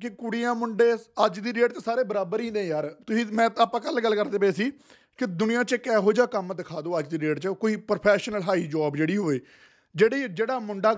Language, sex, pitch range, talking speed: Punjabi, male, 185-230 Hz, 225 wpm